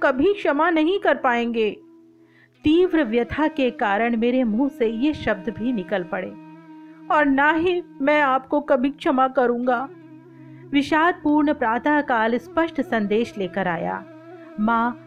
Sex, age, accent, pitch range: female, 40-59, native, 220-295 Hz